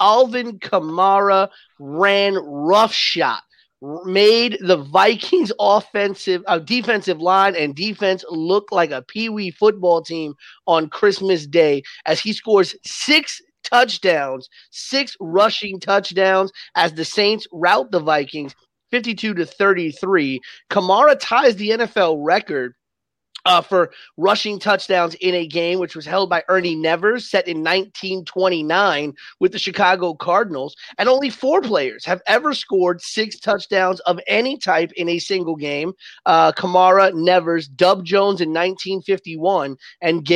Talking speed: 130 wpm